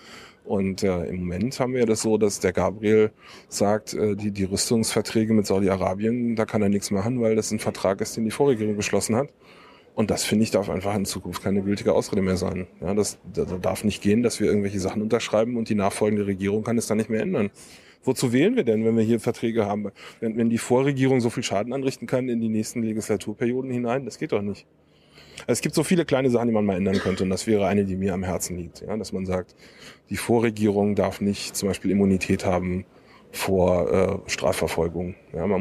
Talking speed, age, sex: 220 wpm, 20-39, male